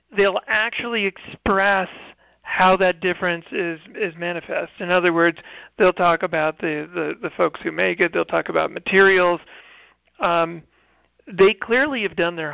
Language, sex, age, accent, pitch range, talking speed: English, male, 50-69, American, 165-190 Hz, 155 wpm